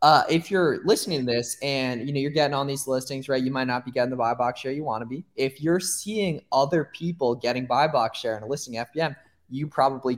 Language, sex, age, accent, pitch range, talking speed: English, male, 20-39, American, 125-165 Hz, 265 wpm